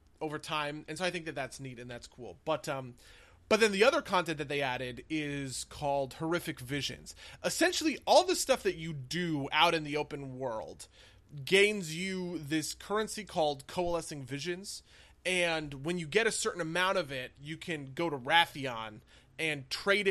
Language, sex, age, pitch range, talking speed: English, male, 30-49, 140-180 Hz, 180 wpm